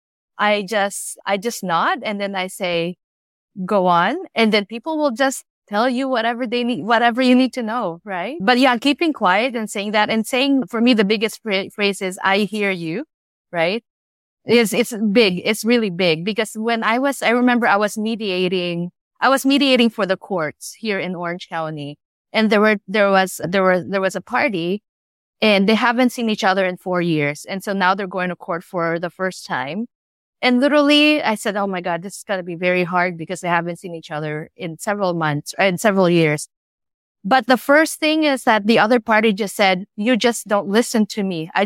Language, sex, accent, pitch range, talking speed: English, female, Filipino, 185-245 Hz, 210 wpm